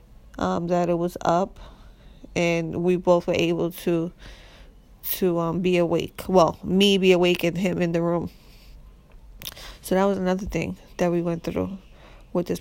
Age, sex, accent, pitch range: 20-39, female, American, 170-185 Hz